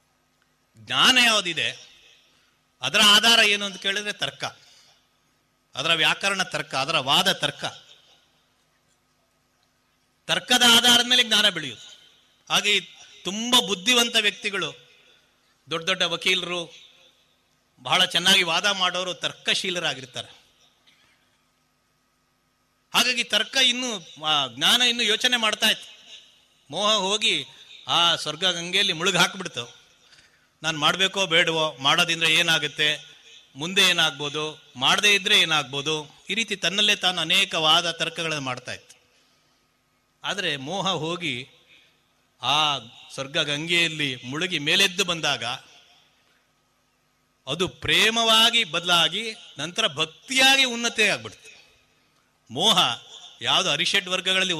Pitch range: 155-205 Hz